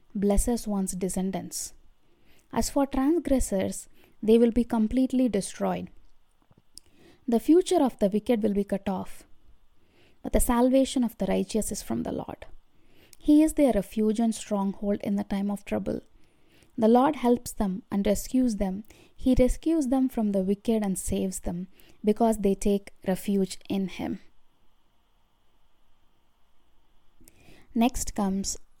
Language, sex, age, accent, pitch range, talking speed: English, female, 20-39, Indian, 195-250 Hz, 135 wpm